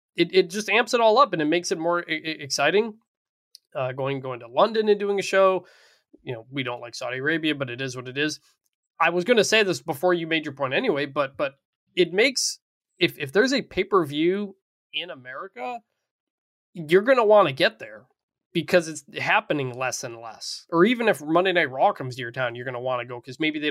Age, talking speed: 20-39, 230 wpm